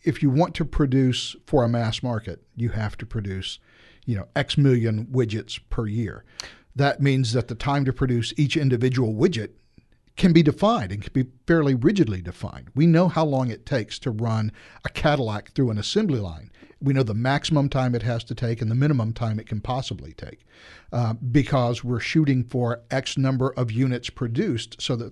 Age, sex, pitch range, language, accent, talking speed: 50-69, male, 115-140 Hz, English, American, 195 wpm